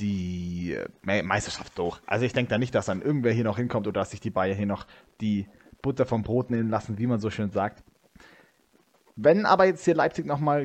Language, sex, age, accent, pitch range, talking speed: German, male, 20-39, German, 110-145 Hz, 215 wpm